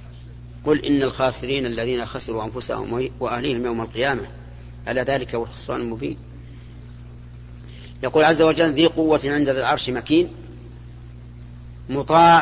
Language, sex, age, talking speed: Arabic, male, 40-59, 115 wpm